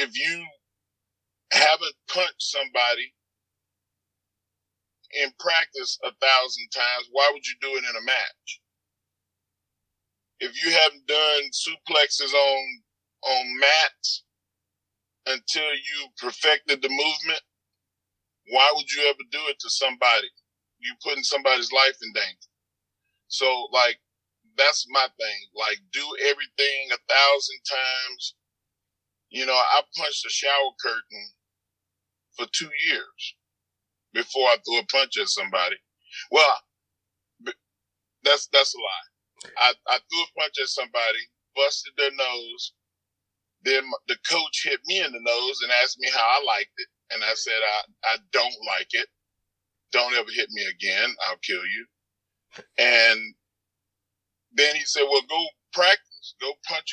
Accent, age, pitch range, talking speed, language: American, 40-59, 100-145 Hz, 135 wpm, English